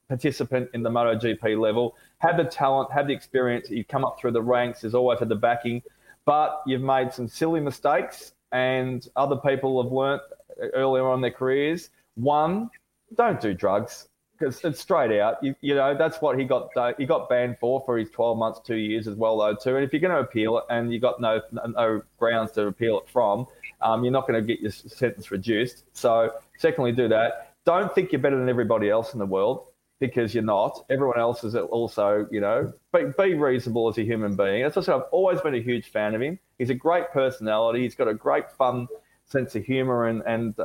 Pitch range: 110-135 Hz